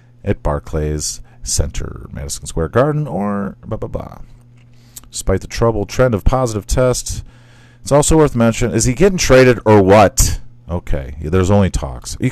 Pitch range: 95-120 Hz